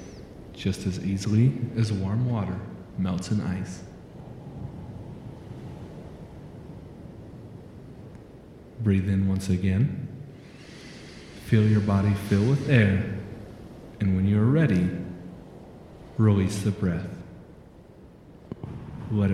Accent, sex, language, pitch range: American, male, English, 95-115 Hz